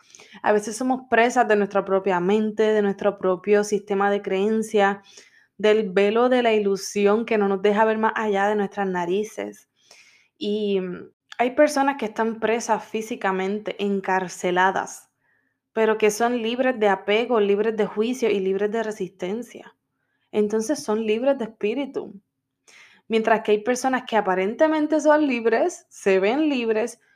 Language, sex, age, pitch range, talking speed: Spanish, female, 20-39, 195-230 Hz, 145 wpm